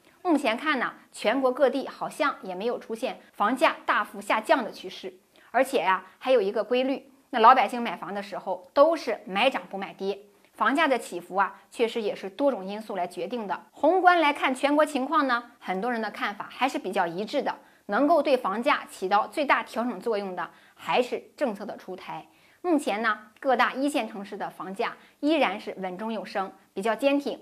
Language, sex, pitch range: Chinese, female, 200-275 Hz